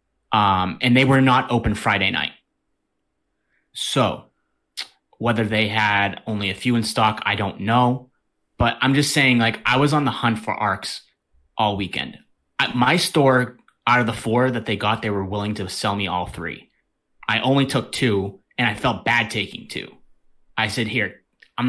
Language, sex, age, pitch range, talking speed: English, male, 30-49, 105-130 Hz, 185 wpm